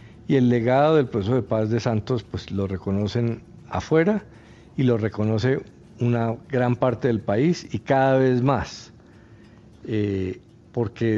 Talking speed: 145 wpm